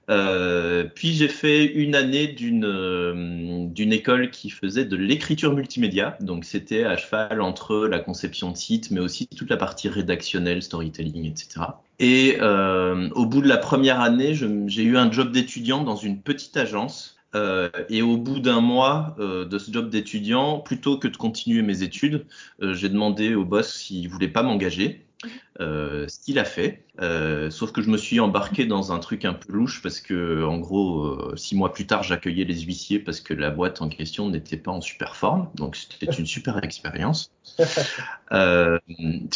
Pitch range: 90-125 Hz